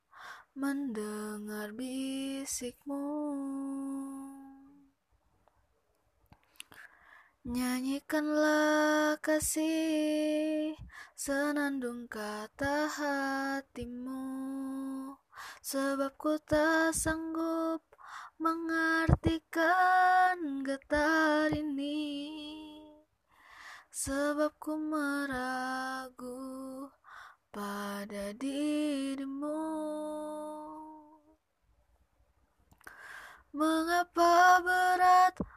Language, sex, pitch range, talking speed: Indonesian, female, 270-320 Hz, 35 wpm